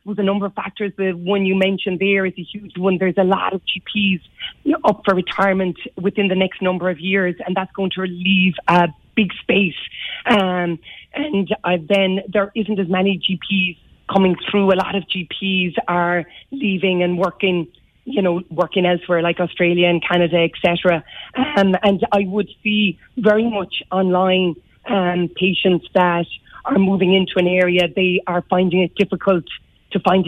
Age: 30-49